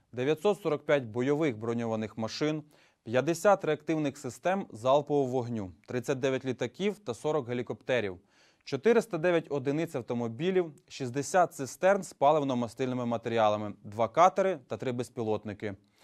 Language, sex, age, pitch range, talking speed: Ukrainian, male, 20-39, 115-170 Hz, 100 wpm